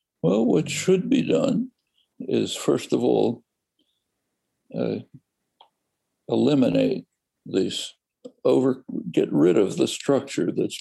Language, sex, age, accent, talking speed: English, male, 60-79, American, 95 wpm